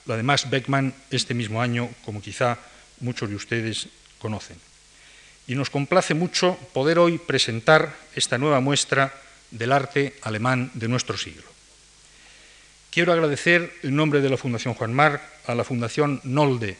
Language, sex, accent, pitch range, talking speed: Spanish, male, Spanish, 120-150 Hz, 145 wpm